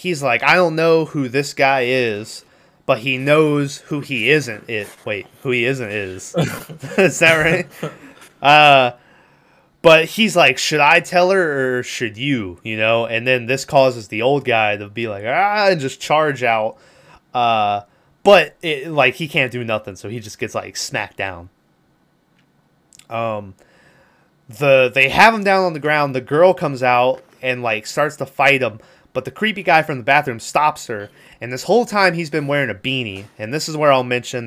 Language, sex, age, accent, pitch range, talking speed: English, male, 20-39, American, 115-155 Hz, 190 wpm